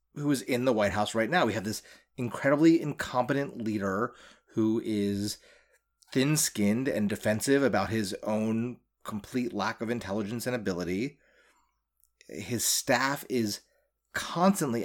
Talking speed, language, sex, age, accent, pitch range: 130 wpm, English, male, 30-49, American, 100-125 Hz